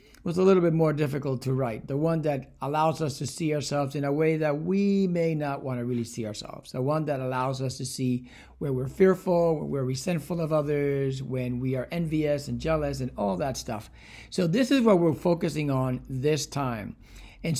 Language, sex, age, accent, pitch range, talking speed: English, male, 60-79, American, 130-165 Hz, 215 wpm